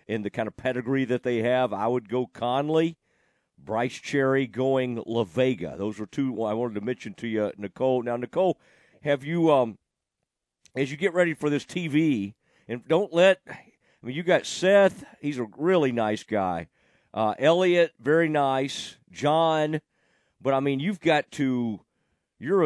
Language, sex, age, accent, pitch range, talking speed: English, male, 50-69, American, 115-150 Hz, 170 wpm